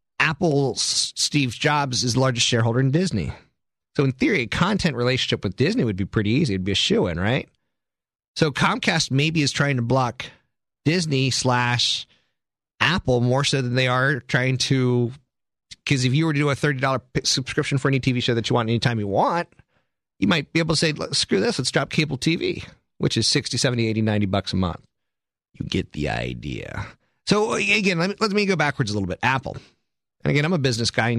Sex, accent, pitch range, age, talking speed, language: male, American, 105-145 Hz, 30-49, 205 wpm, English